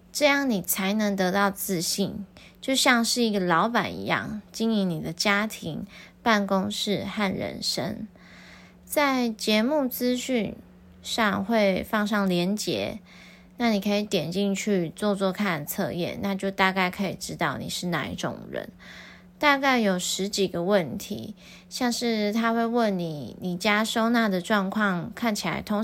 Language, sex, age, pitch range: Chinese, female, 20-39, 180-220 Hz